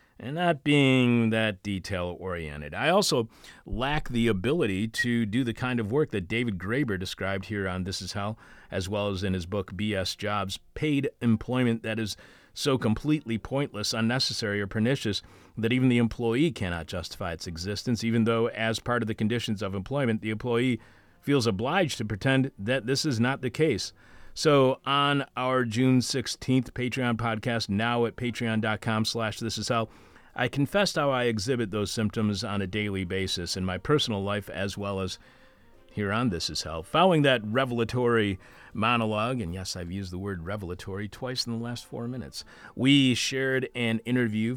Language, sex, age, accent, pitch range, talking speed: English, male, 40-59, American, 100-125 Hz, 170 wpm